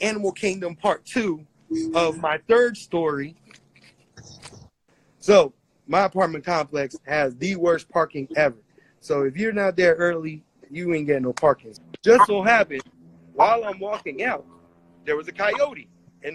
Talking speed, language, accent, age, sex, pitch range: 145 wpm, English, American, 30-49, male, 145-195 Hz